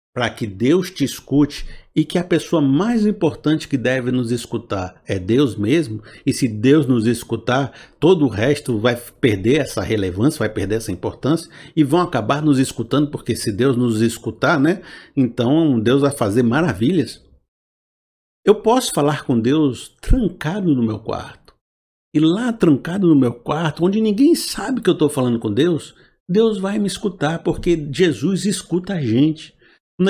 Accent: Brazilian